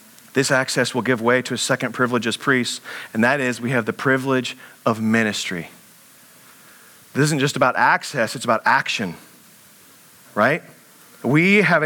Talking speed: 155 wpm